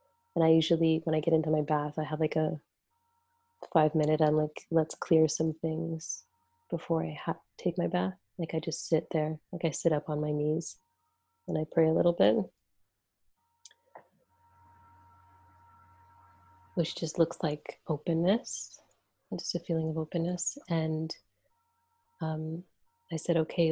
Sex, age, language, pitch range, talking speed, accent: female, 30-49, English, 155-170 Hz, 150 wpm, American